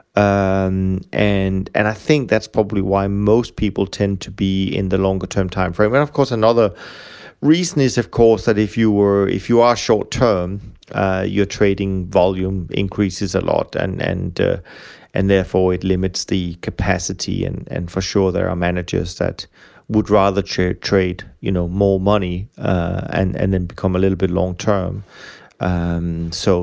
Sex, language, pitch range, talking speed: male, English, 95-110 Hz, 180 wpm